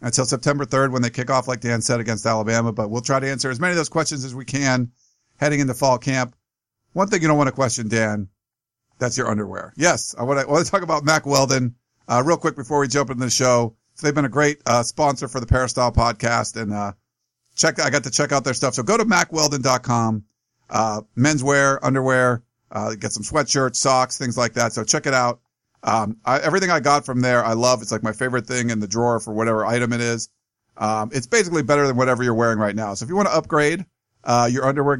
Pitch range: 115-140 Hz